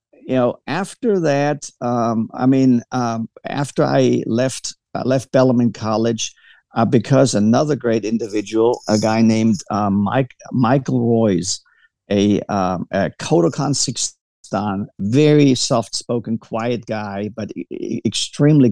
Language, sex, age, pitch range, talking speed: English, male, 50-69, 105-130 Hz, 120 wpm